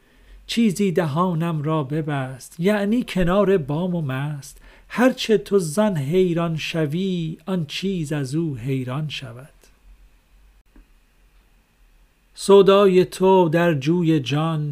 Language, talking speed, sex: Persian, 100 wpm, male